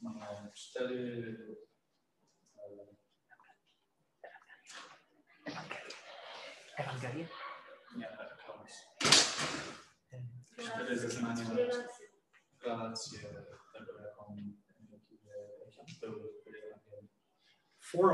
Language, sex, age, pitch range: Polish, male, 30-49, 115-155 Hz